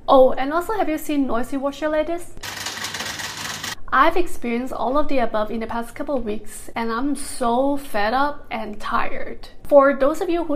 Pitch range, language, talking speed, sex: 230-290 Hz, English, 180 wpm, female